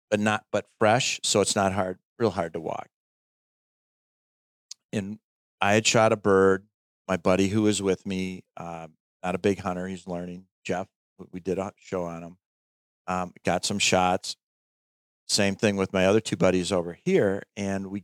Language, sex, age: English, male, 40-59